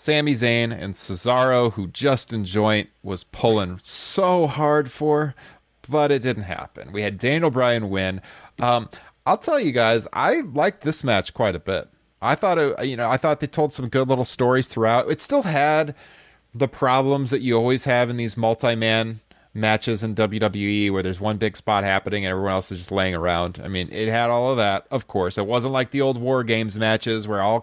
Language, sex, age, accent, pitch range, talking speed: English, male, 30-49, American, 110-140 Hz, 205 wpm